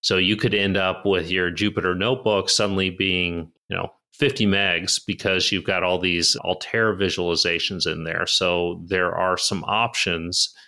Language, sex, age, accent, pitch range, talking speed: English, male, 30-49, American, 90-105 Hz, 165 wpm